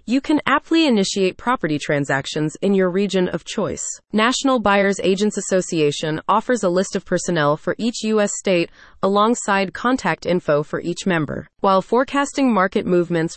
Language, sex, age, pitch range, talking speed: English, female, 30-49, 170-225 Hz, 155 wpm